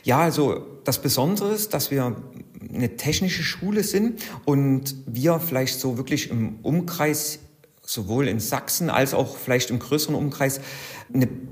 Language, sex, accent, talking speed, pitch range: German, male, German, 145 wpm, 120-150 Hz